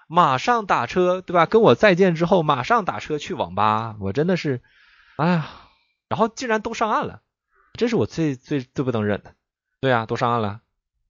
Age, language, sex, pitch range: 20-39, Chinese, male, 110-155 Hz